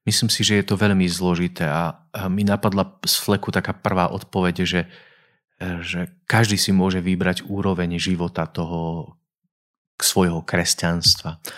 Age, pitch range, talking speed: 40-59, 90-105 Hz, 140 wpm